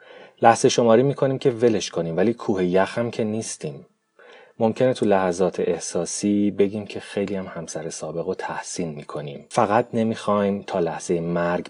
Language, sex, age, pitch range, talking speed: Persian, male, 30-49, 85-110 Hz, 155 wpm